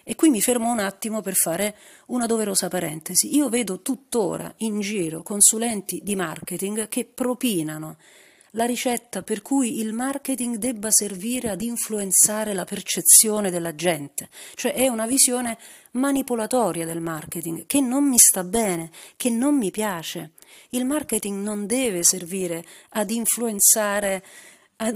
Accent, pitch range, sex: native, 180-230 Hz, female